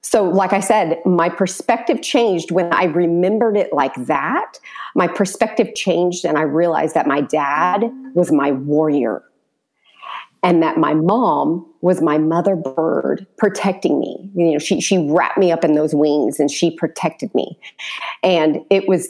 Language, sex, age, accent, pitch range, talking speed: English, female, 40-59, American, 155-195 Hz, 165 wpm